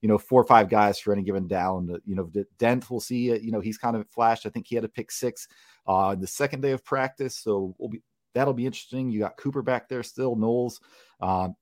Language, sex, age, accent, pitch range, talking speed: English, male, 30-49, American, 105-130 Hz, 260 wpm